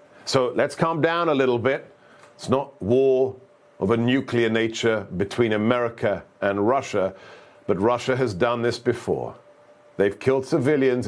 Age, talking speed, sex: 50-69, 145 wpm, male